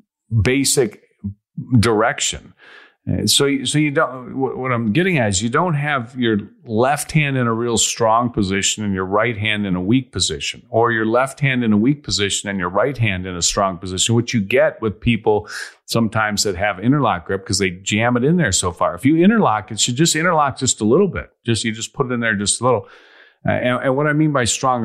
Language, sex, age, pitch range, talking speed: English, male, 40-59, 100-130 Hz, 225 wpm